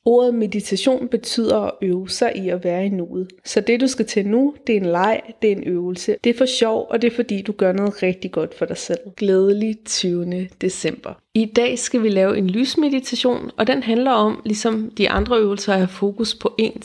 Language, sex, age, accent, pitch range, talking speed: Danish, female, 30-49, native, 185-220 Hz, 230 wpm